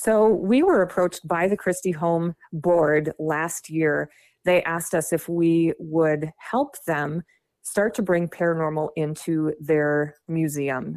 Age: 30-49